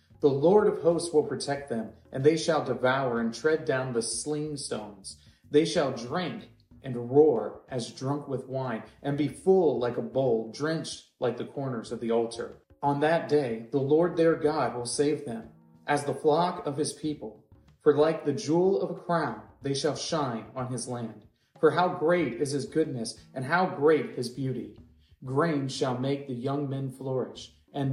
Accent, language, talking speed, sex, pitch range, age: American, English, 185 wpm, male, 125-170 Hz, 30-49